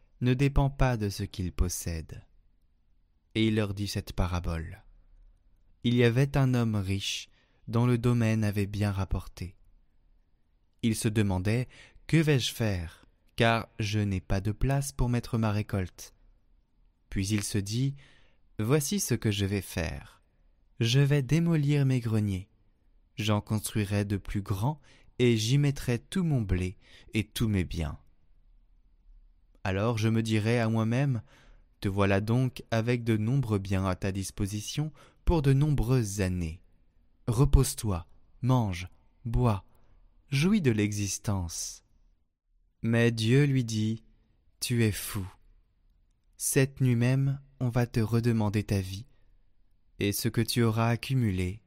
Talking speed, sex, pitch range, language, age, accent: 140 wpm, male, 90-120 Hz, French, 20-39, French